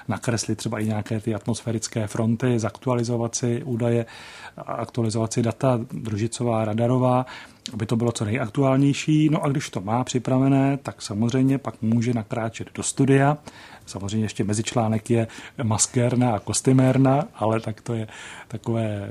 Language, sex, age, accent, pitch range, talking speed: Czech, male, 40-59, native, 115-130 Hz, 130 wpm